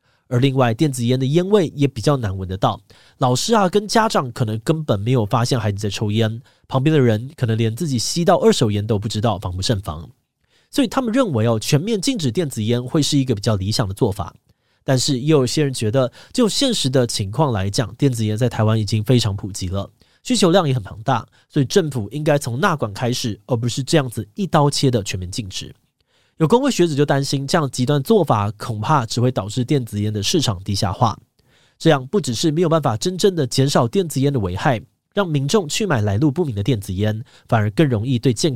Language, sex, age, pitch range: Chinese, male, 20-39, 110-155 Hz